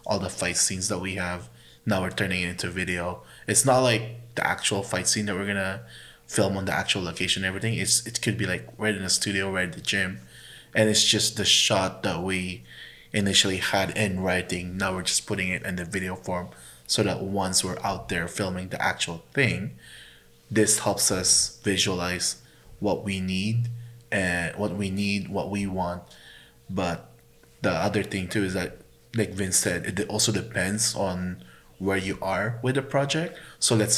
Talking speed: 195 wpm